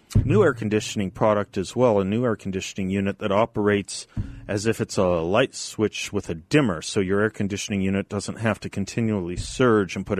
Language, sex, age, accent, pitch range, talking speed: English, male, 40-59, American, 105-145 Hz, 200 wpm